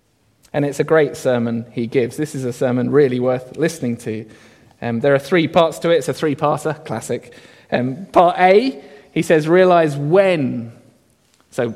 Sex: male